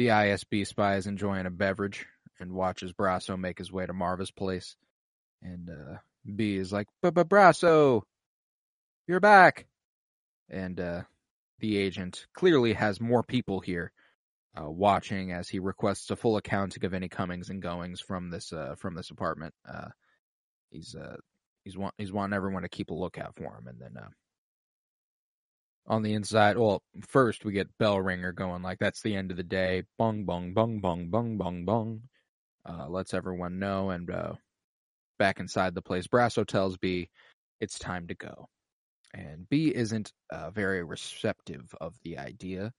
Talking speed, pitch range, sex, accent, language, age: 170 wpm, 90-110 Hz, male, American, English, 20-39